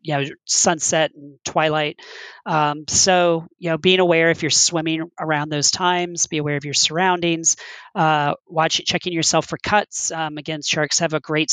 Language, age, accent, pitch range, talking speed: English, 40-59, American, 145-165 Hz, 175 wpm